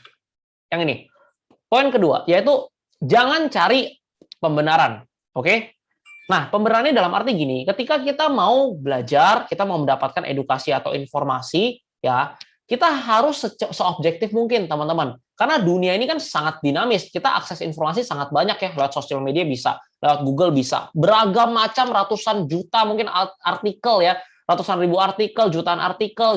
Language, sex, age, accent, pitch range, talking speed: Indonesian, male, 20-39, native, 165-235 Hz, 140 wpm